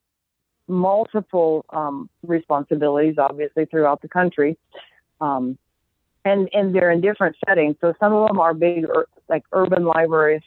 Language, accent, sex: English, American, female